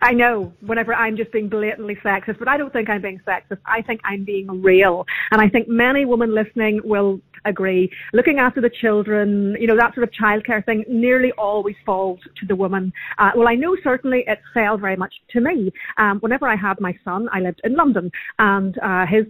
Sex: female